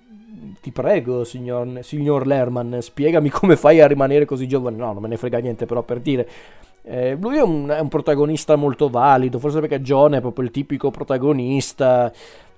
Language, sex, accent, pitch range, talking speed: Italian, male, native, 125-155 Hz, 175 wpm